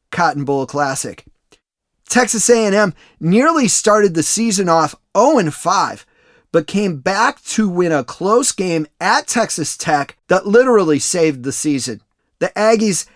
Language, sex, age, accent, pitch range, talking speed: English, male, 30-49, American, 160-220 Hz, 130 wpm